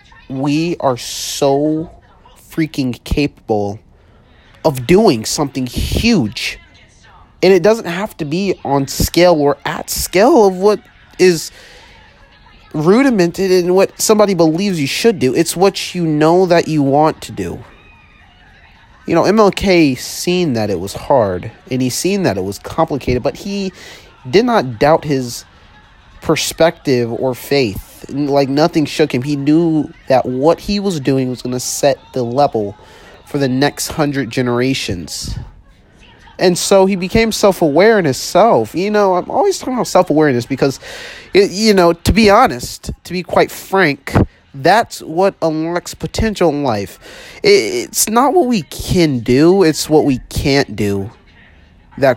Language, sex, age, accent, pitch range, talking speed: English, male, 30-49, American, 125-185 Hz, 150 wpm